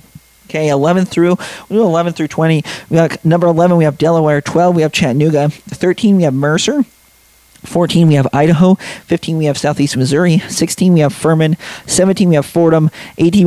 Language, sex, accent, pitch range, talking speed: English, male, American, 140-170 Hz, 180 wpm